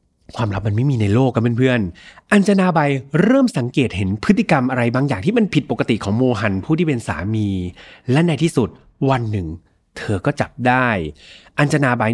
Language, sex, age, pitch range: Thai, male, 30-49, 120-160 Hz